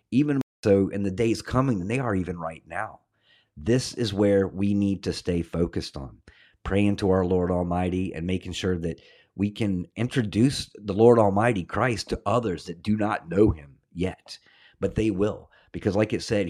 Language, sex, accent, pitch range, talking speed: English, male, American, 95-110 Hz, 190 wpm